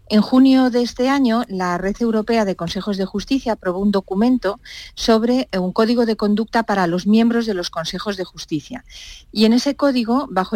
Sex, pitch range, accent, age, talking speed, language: female, 180-225 Hz, Spanish, 40-59, 190 wpm, Spanish